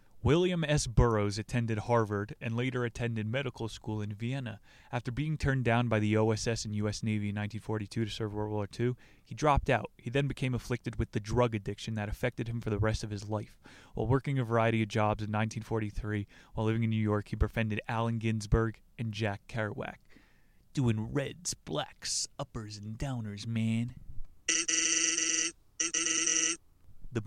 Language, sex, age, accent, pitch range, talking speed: English, male, 30-49, American, 110-125 Hz, 170 wpm